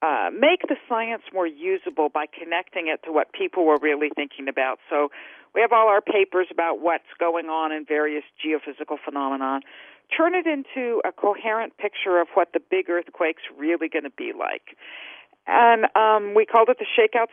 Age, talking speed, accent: 50-69, 185 wpm, American